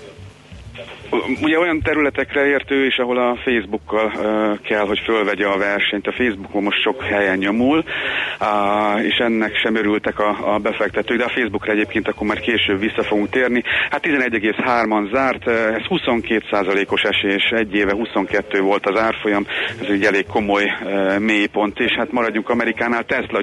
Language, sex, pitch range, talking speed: Hungarian, male, 100-115 Hz, 160 wpm